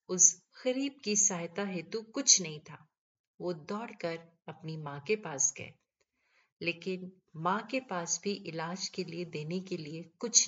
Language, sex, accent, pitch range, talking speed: Hindi, female, native, 160-245 Hz, 155 wpm